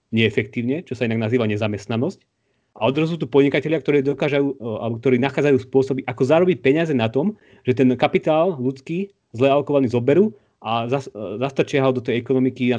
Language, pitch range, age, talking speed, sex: Slovak, 115-135 Hz, 30-49, 145 wpm, male